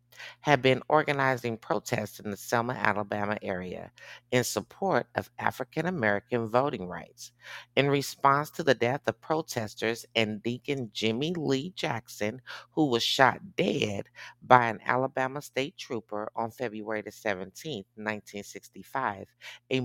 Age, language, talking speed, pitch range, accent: 50-69, English, 125 wpm, 110-135 Hz, American